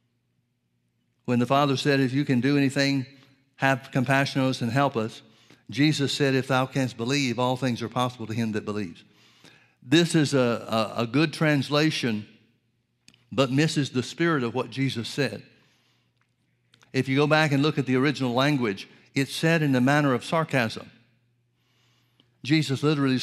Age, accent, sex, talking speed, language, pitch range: 60-79, American, male, 165 wpm, English, 120-145 Hz